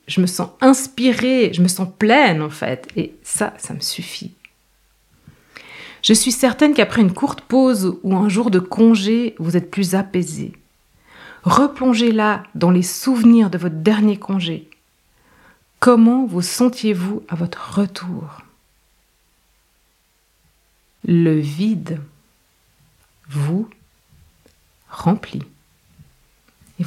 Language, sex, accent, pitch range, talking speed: French, female, French, 165-220 Hz, 110 wpm